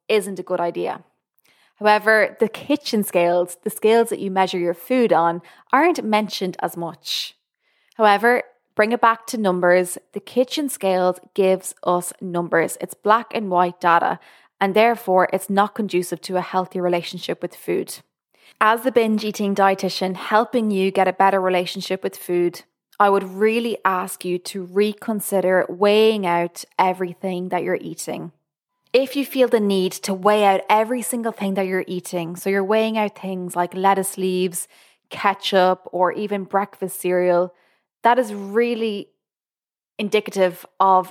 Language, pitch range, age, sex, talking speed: English, 180-215 Hz, 20-39, female, 155 wpm